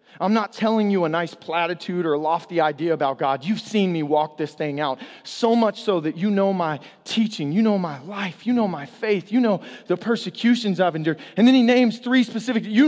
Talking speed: 230 wpm